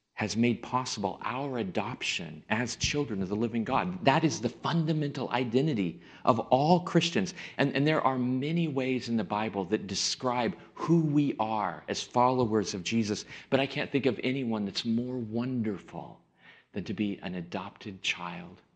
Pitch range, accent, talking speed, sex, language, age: 110-140 Hz, American, 165 wpm, male, English, 40-59